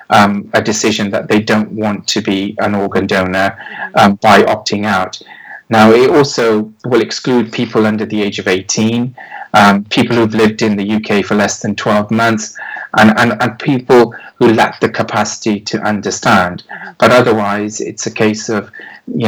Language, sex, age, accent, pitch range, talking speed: English, male, 30-49, British, 105-115 Hz, 175 wpm